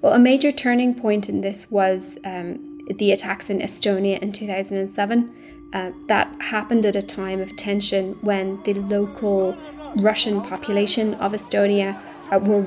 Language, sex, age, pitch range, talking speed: English, female, 20-39, 195-235 Hz, 150 wpm